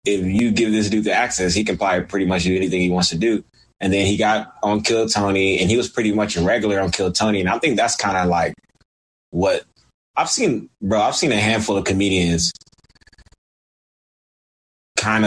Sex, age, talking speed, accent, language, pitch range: male, 20-39, 210 wpm, American, English, 90-110 Hz